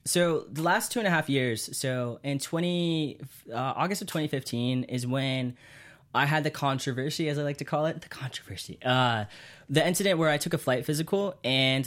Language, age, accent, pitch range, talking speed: English, 20-39, American, 125-150 Hz, 195 wpm